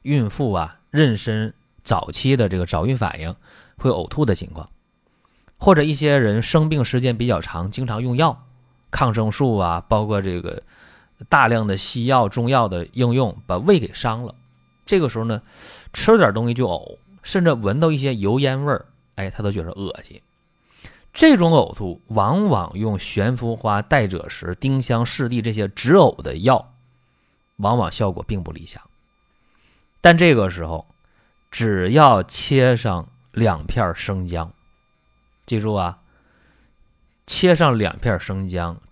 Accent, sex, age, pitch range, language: native, male, 30-49, 95-130 Hz, Chinese